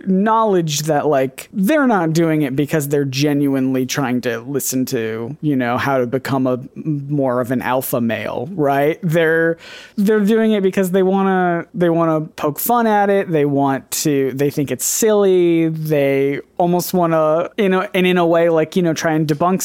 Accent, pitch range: American, 140-185 Hz